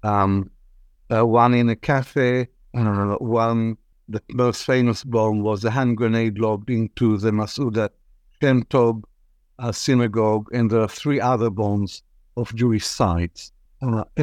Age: 60-79